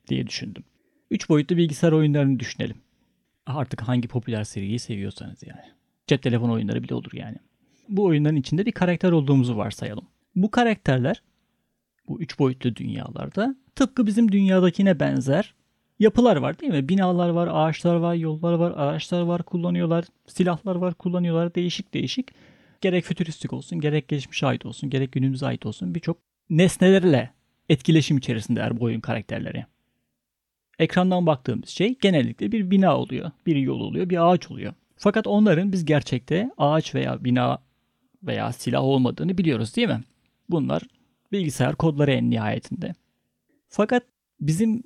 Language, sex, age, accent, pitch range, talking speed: Turkish, male, 40-59, native, 135-185 Hz, 140 wpm